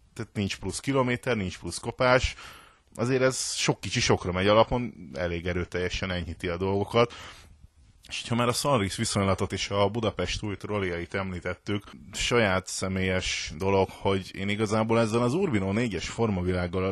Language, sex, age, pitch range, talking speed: Hungarian, male, 30-49, 90-120 Hz, 155 wpm